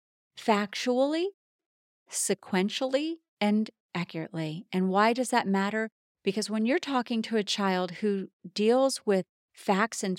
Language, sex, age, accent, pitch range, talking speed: English, female, 40-59, American, 190-260 Hz, 125 wpm